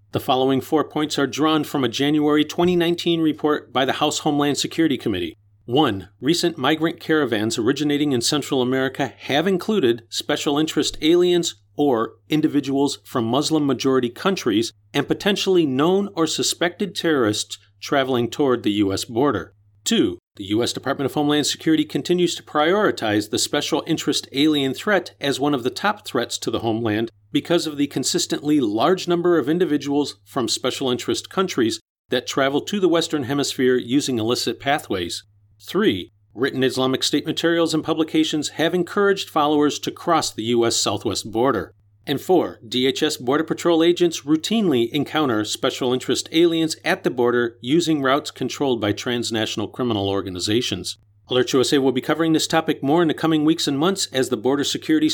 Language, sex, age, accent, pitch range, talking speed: English, male, 40-59, American, 125-165 Hz, 160 wpm